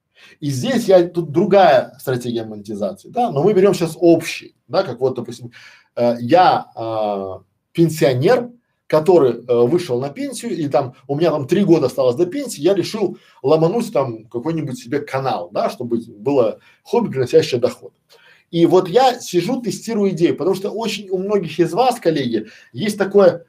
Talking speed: 165 wpm